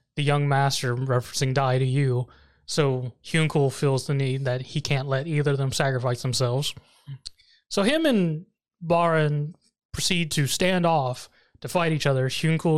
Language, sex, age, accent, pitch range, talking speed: English, male, 20-39, American, 135-180 Hz, 160 wpm